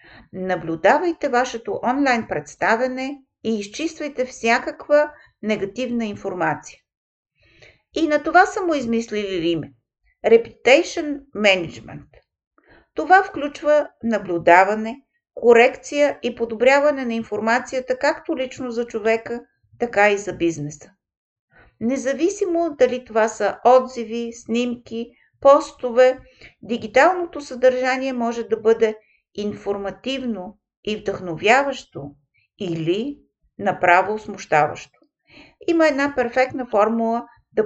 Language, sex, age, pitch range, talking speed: Bulgarian, female, 50-69, 205-265 Hz, 90 wpm